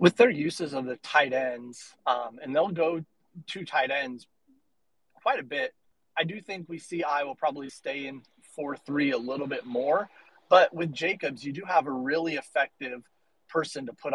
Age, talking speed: 30-49, 190 wpm